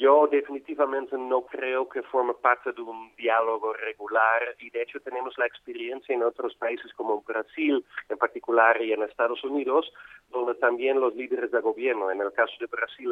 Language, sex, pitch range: Spanish, male, 115-150 Hz